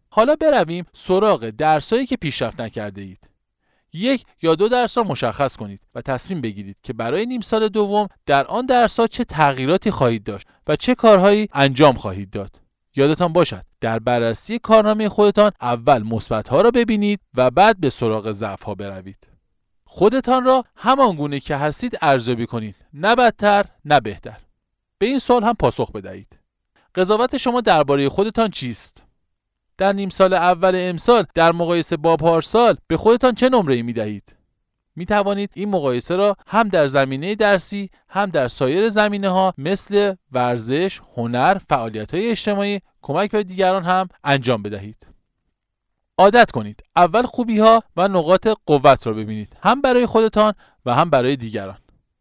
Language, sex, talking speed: Persian, male, 150 wpm